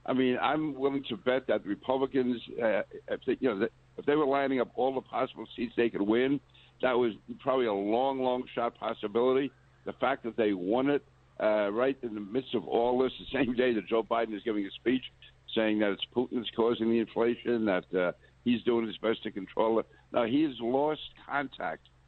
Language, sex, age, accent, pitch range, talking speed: English, male, 60-79, American, 105-125 Hz, 210 wpm